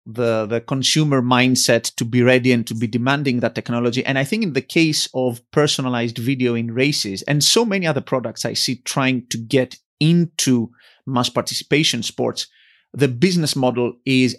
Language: English